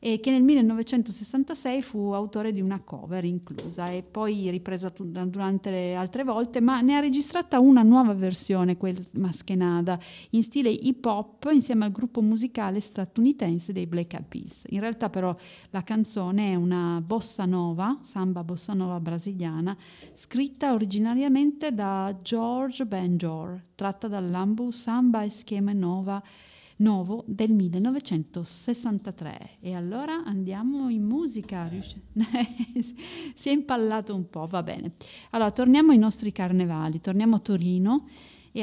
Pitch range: 180-240 Hz